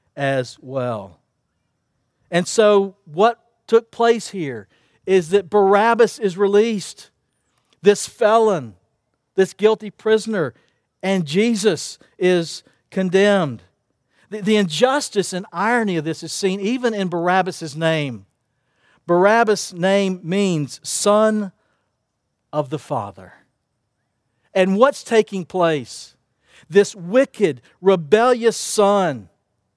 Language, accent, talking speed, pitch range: English, American, 100 wpm, 130-205 Hz